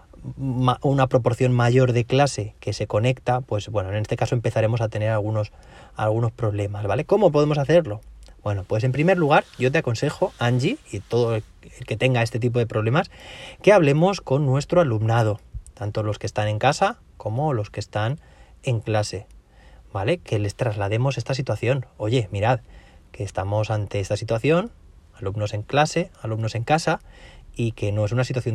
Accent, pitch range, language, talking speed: Spanish, 105-135 Hz, Spanish, 175 wpm